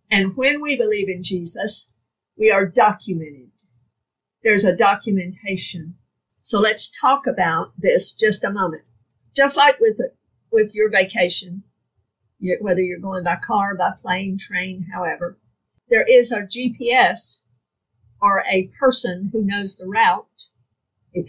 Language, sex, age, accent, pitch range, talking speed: English, female, 50-69, American, 180-240 Hz, 130 wpm